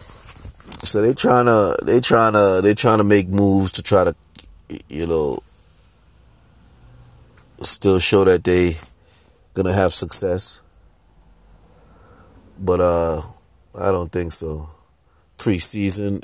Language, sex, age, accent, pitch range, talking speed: English, male, 30-49, American, 80-105 Hz, 120 wpm